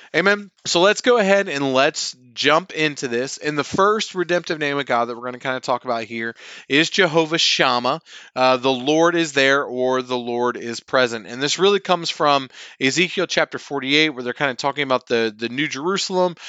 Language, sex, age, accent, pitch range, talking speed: English, male, 30-49, American, 125-155 Hz, 210 wpm